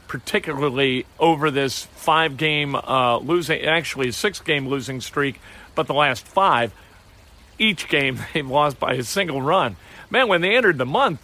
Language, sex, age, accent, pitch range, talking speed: English, male, 50-69, American, 130-170 Hz, 150 wpm